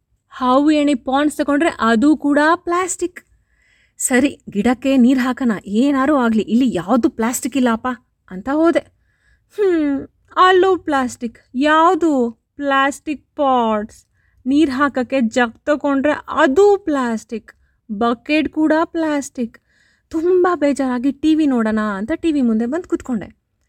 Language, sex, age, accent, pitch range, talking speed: Kannada, female, 30-49, native, 235-305 Hz, 110 wpm